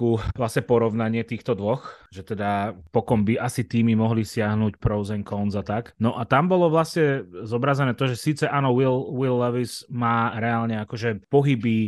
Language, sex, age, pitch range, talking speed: Slovak, male, 30-49, 110-130 Hz, 170 wpm